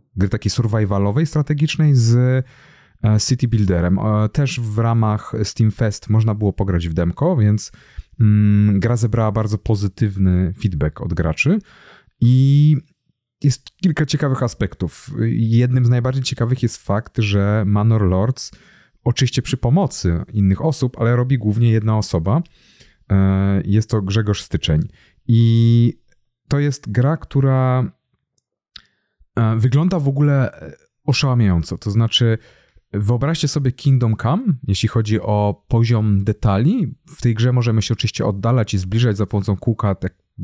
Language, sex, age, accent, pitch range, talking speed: Polish, male, 30-49, native, 105-140 Hz, 130 wpm